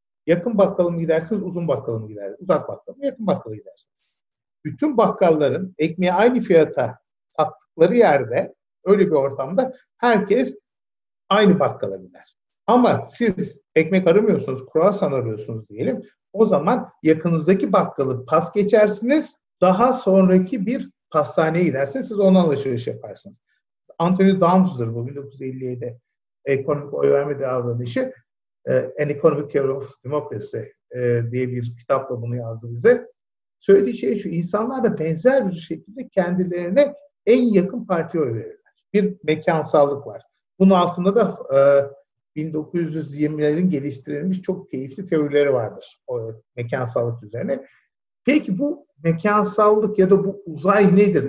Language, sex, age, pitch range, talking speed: Turkish, male, 50-69, 140-205 Hz, 120 wpm